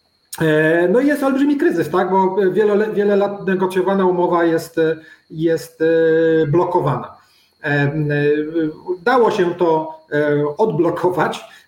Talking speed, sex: 90 wpm, male